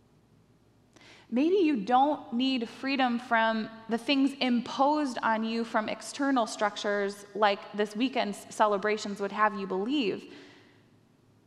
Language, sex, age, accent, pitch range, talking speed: English, female, 20-39, American, 180-240 Hz, 115 wpm